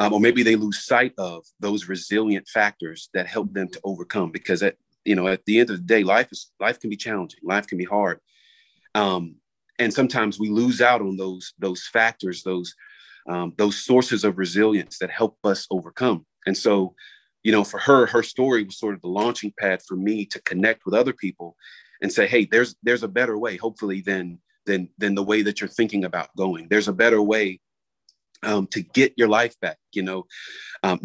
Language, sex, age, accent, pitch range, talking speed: English, male, 40-59, American, 95-115 Hz, 210 wpm